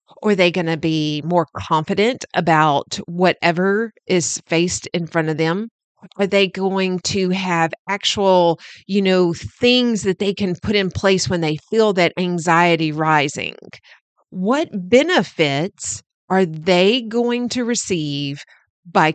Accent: American